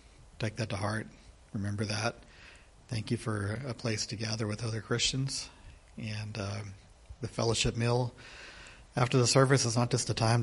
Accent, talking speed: American, 165 wpm